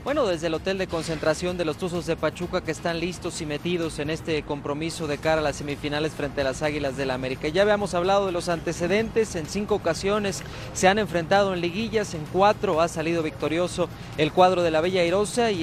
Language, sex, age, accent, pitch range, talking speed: Spanish, male, 30-49, Mexican, 155-195 Hz, 220 wpm